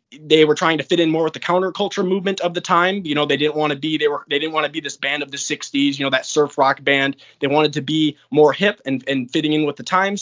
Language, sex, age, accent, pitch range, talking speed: English, male, 20-39, American, 140-175 Hz, 305 wpm